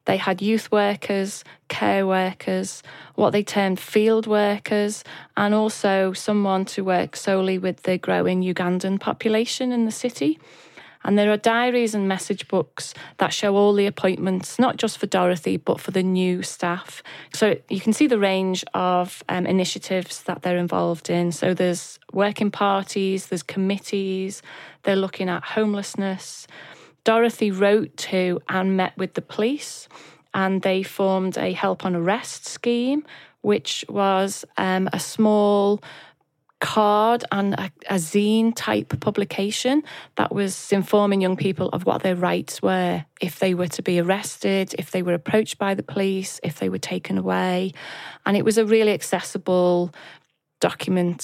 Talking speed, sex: 155 wpm, female